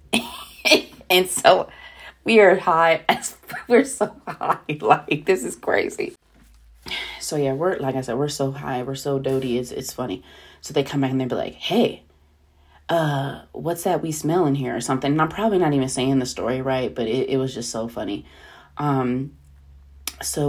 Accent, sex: American, female